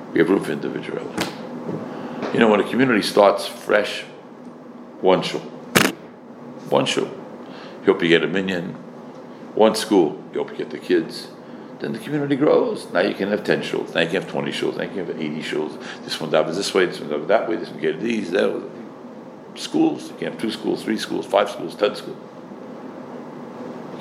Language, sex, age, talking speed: English, male, 60-79, 205 wpm